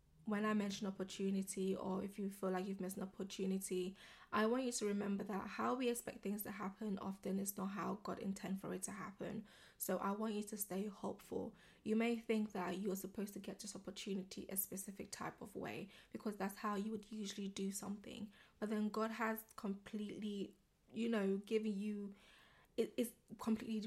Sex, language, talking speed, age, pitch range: female, English, 190 wpm, 20-39, 195-215 Hz